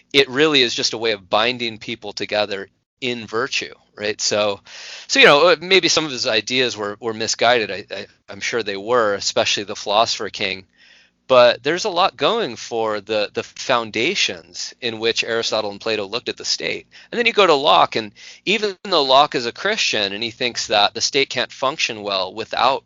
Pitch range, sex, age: 110-135 Hz, male, 30-49